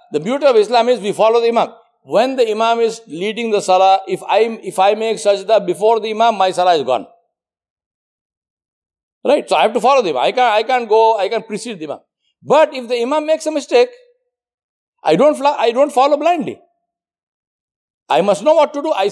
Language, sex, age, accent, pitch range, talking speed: English, male, 60-79, Indian, 185-280 Hz, 205 wpm